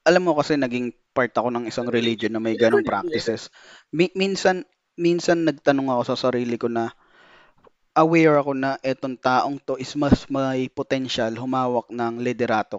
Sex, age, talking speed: male, 20-39, 165 wpm